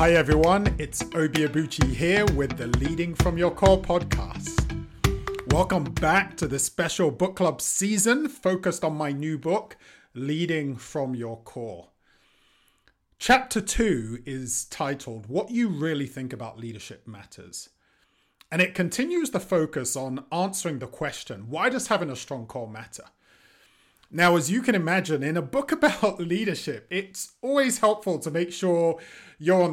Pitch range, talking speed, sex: 135-185 Hz, 150 wpm, male